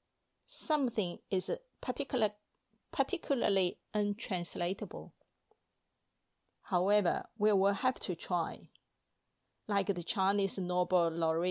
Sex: female